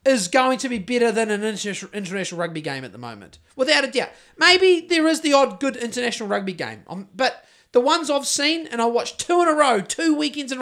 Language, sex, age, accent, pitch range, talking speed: English, male, 30-49, Australian, 230-335 Hz, 230 wpm